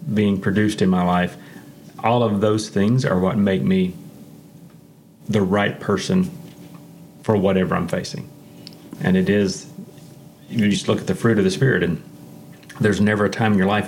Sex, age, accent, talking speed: male, 30-49, American, 175 wpm